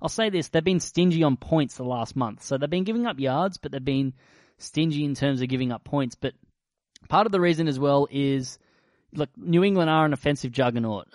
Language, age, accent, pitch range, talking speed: English, 20-39, Australian, 125-150 Hz, 225 wpm